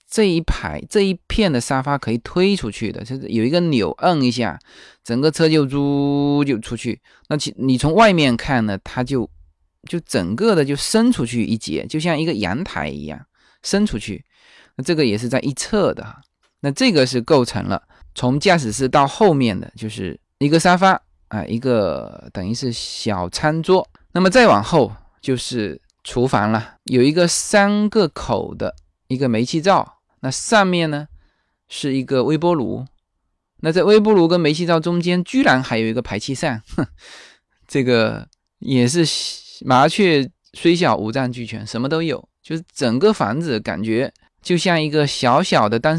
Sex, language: male, Chinese